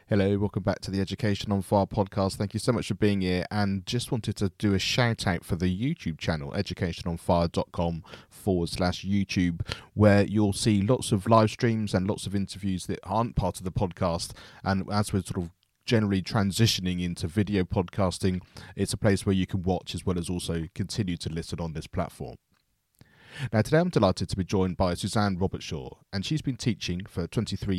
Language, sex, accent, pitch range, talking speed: English, male, British, 90-110 Hz, 200 wpm